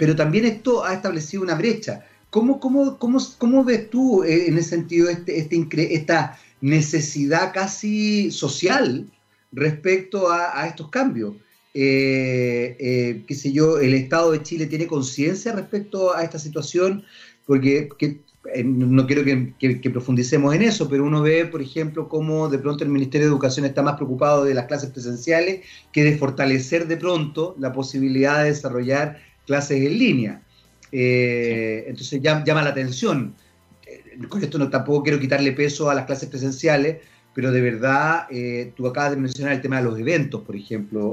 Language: Spanish